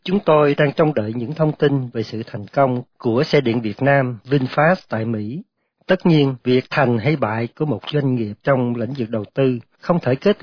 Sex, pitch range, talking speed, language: male, 115-155 Hz, 220 wpm, Vietnamese